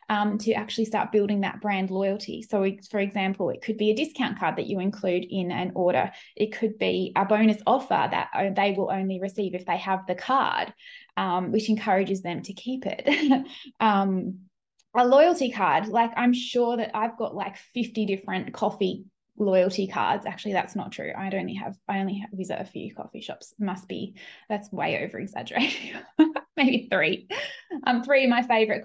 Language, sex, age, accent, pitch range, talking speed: English, female, 20-39, Australian, 200-255 Hz, 185 wpm